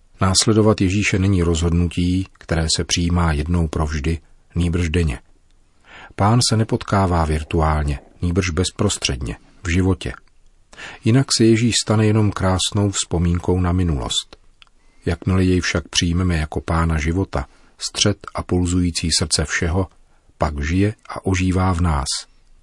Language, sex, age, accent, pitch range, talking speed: Czech, male, 40-59, native, 80-100 Hz, 120 wpm